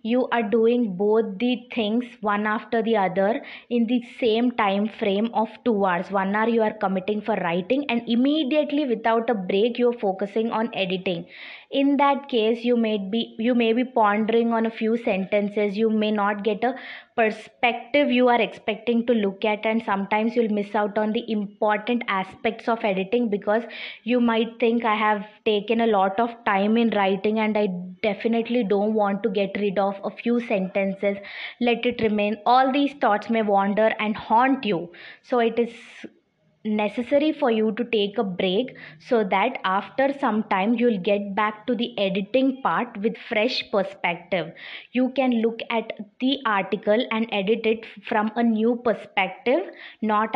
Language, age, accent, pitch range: English, 20-39, Indian, 210-240 Hz